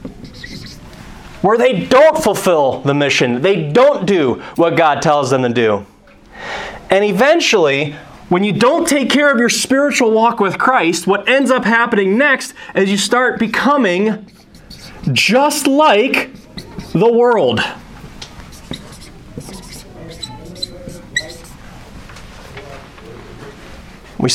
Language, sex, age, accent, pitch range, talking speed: English, male, 30-49, American, 170-255 Hz, 105 wpm